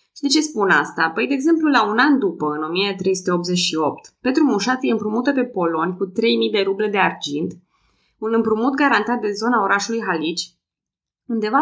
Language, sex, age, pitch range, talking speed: Romanian, female, 20-39, 175-235 Hz, 175 wpm